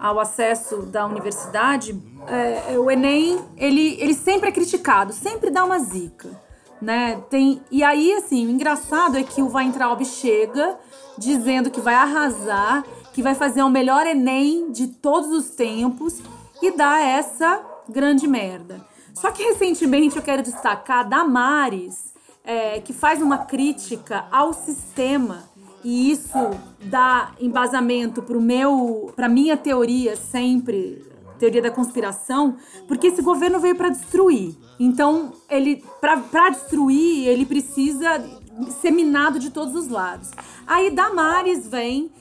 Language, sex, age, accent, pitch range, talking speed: Portuguese, female, 30-49, Brazilian, 245-305 Hz, 135 wpm